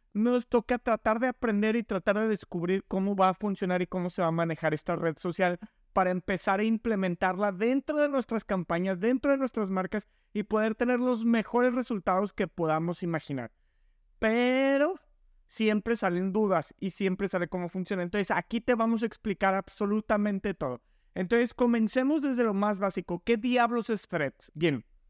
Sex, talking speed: male, 170 wpm